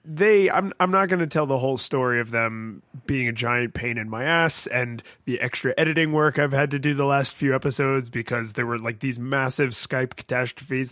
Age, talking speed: 20-39, 220 wpm